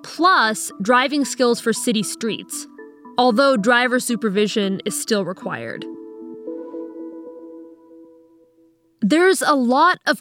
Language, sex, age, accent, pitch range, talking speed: English, female, 20-39, American, 200-255 Hz, 95 wpm